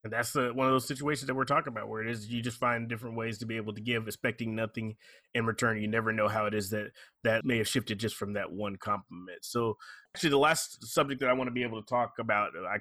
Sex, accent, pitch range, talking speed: male, American, 110-130 Hz, 270 wpm